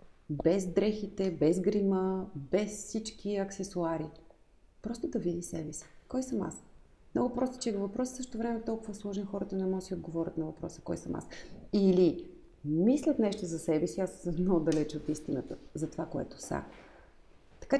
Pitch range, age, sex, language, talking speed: 170-225 Hz, 30-49, female, Bulgarian, 170 wpm